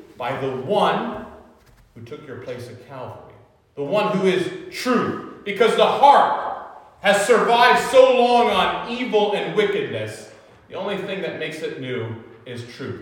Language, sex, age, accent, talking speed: English, male, 40-59, American, 155 wpm